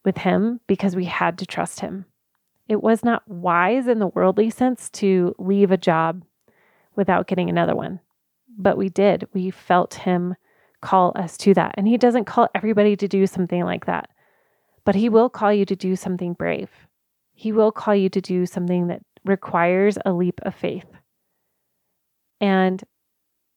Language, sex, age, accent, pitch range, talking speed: English, female, 30-49, American, 180-205 Hz, 170 wpm